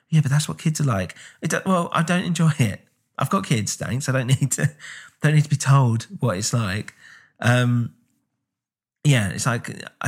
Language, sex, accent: English, male, British